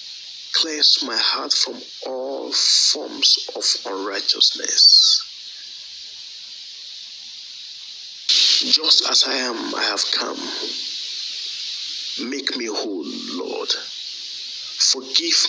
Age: 50-69